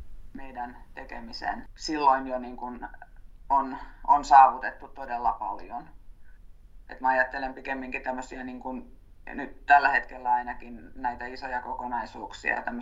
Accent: native